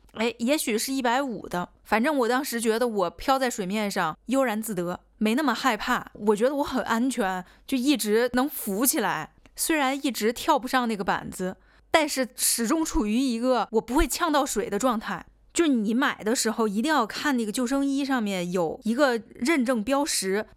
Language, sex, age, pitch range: Chinese, female, 20-39, 215-275 Hz